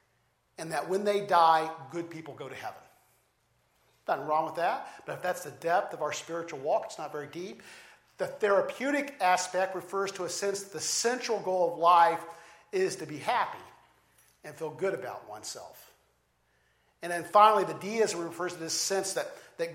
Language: English